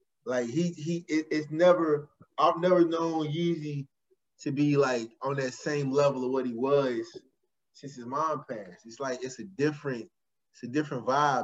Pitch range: 135-175 Hz